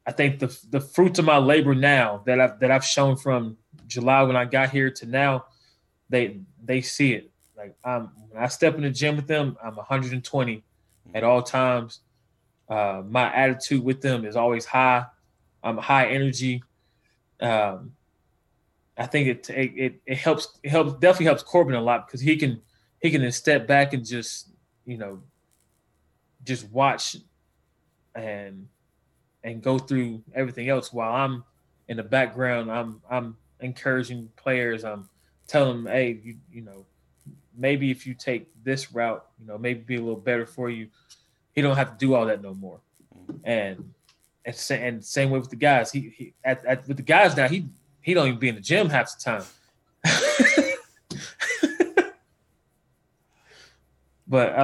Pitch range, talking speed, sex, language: 115-140 Hz, 170 wpm, male, English